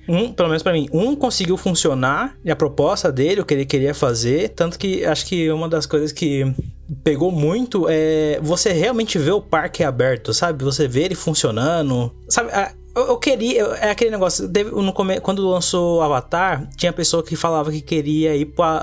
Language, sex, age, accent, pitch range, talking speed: Portuguese, male, 20-39, Brazilian, 145-185 Hz, 180 wpm